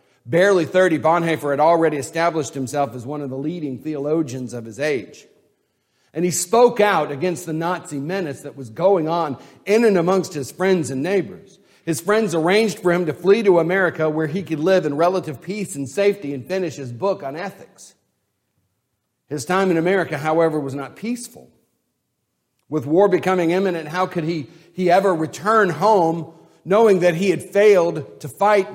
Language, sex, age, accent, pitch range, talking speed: English, male, 50-69, American, 145-195 Hz, 175 wpm